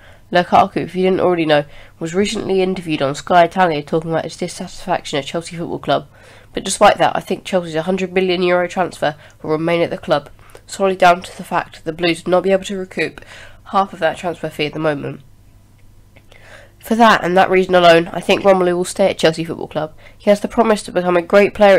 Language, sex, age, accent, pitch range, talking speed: English, female, 20-39, British, 150-185 Hz, 220 wpm